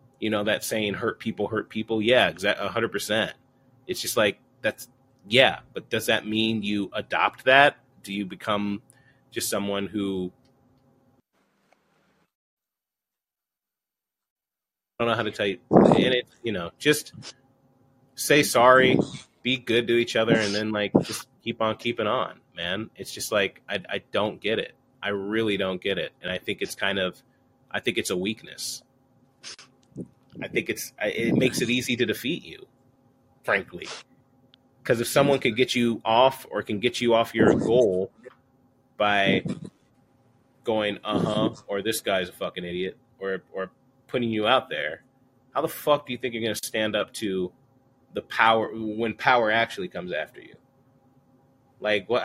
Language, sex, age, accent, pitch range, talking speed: English, male, 30-49, American, 105-130 Hz, 165 wpm